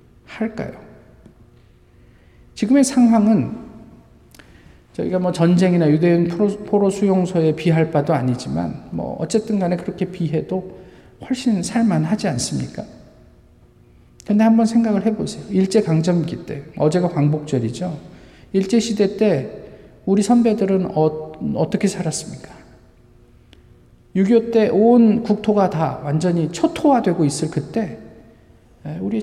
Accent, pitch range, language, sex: native, 150-215 Hz, Korean, male